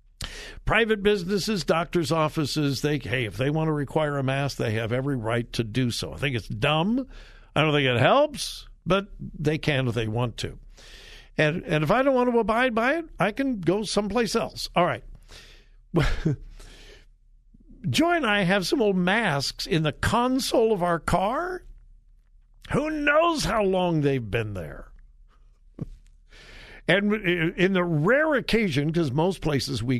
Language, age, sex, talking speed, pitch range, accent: English, 60-79, male, 165 wpm, 120-180 Hz, American